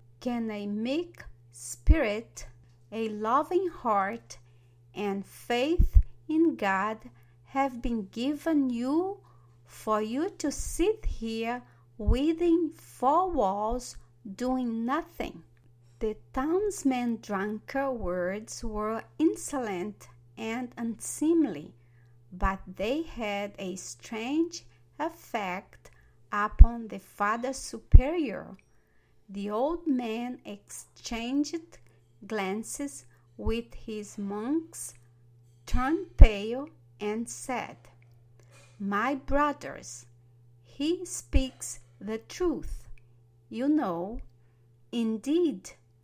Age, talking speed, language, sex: 50-69, 85 wpm, English, female